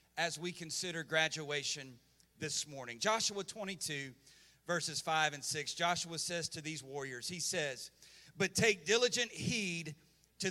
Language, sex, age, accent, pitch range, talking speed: English, male, 40-59, American, 155-200 Hz, 135 wpm